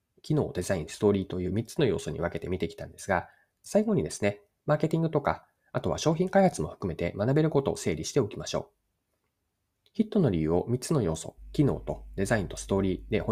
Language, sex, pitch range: Japanese, male, 95-140 Hz